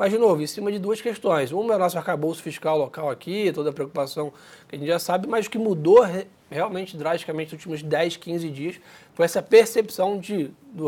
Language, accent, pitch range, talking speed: Portuguese, Brazilian, 155-190 Hz, 215 wpm